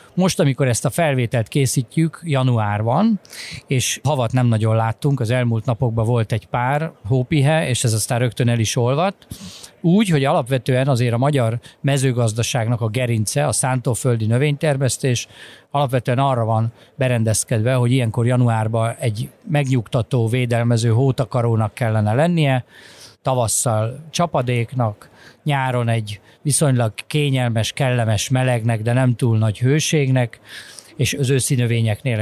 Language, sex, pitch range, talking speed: Hungarian, male, 115-140 Hz, 125 wpm